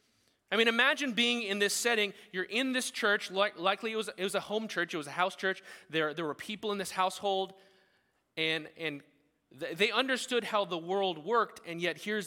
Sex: male